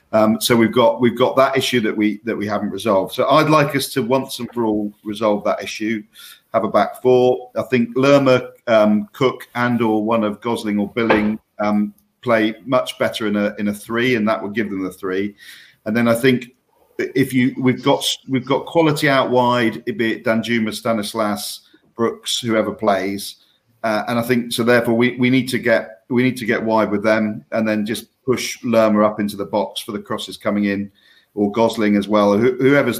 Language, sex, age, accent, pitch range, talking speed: English, male, 40-59, British, 105-125 Hz, 210 wpm